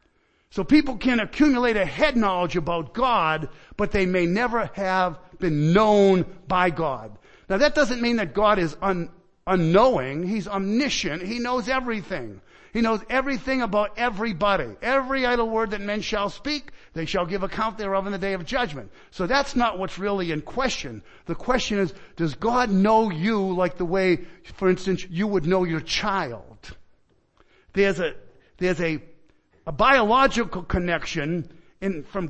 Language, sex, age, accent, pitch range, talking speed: English, male, 50-69, American, 180-235 Hz, 160 wpm